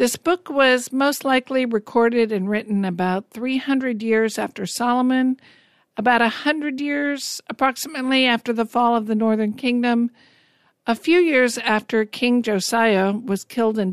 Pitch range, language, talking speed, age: 205-245 Hz, English, 140 wpm, 50-69